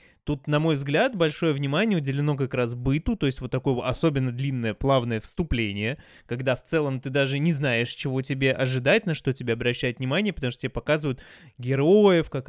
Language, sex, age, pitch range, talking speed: Russian, male, 20-39, 125-155 Hz, 185 wpm